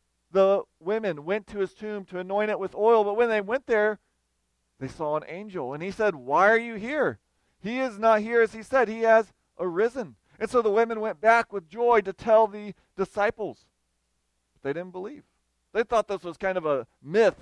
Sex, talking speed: male, 205 wpm